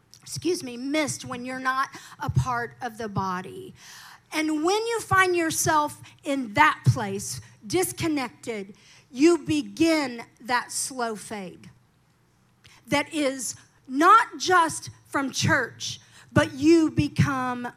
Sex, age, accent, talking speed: female, 50-69, American, 115 wpm